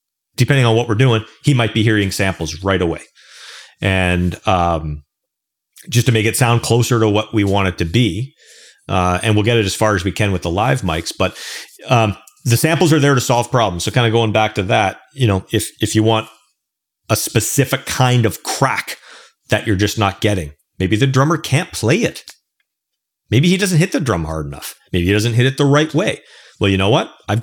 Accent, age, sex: American, 40-59, male